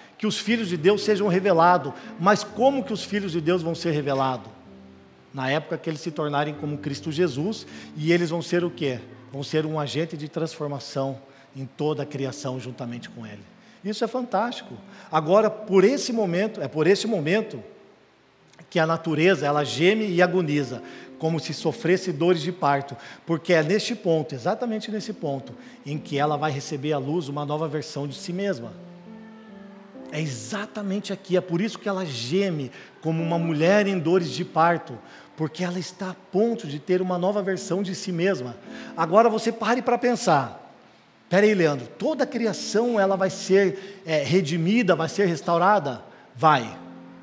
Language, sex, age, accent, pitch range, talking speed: Portuguese, male, 50-69, Brazilian, 150-200 Hz, 175 wpm